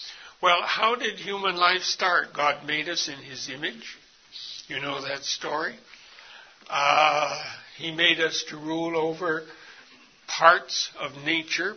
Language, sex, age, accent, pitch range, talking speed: English, male, 60-79, American, 150-185 Hz, 135 wpm